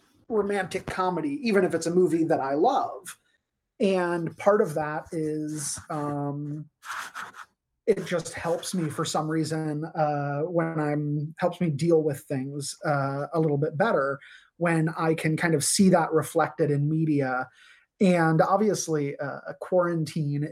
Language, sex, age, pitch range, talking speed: English, male, 30-49, 145-165 Hz, 150 wpm